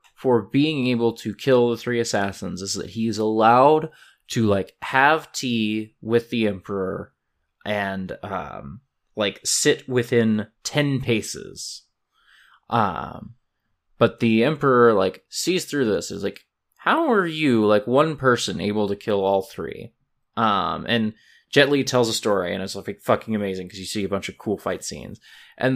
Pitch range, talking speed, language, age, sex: 105-140 Hz, 160 wpm, English, 20-39, male